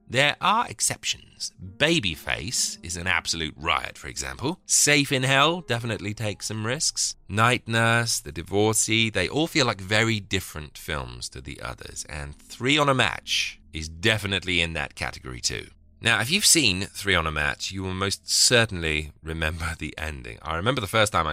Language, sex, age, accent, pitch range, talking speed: English, male, 30-49, British, 80-115 Hz, 175 wpm